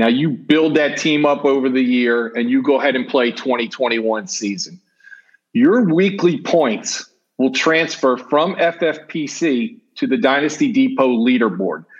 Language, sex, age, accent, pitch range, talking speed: English, male, 40-59, American, 130-175 Hz, 145 wpm